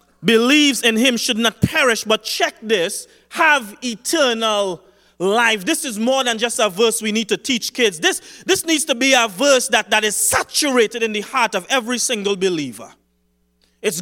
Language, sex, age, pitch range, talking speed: English, male, 30-49, 190-250 Hz, 185 wpm